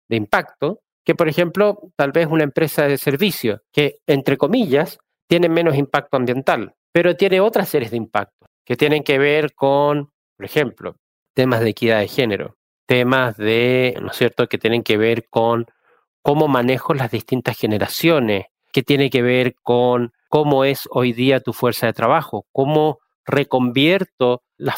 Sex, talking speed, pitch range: male, 160 wpm, 125-160 Hz